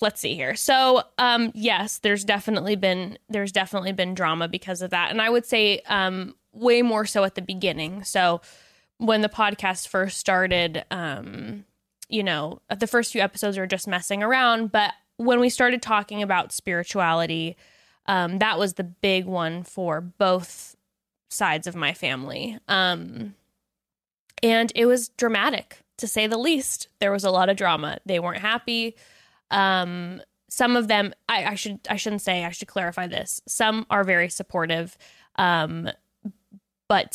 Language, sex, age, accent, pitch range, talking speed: English, female, 10-29, American, 185-225 Hz, 165 wpm